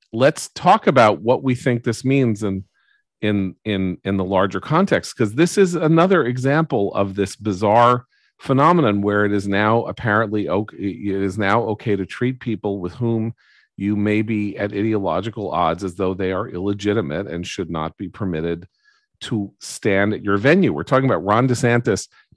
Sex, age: male, 40-59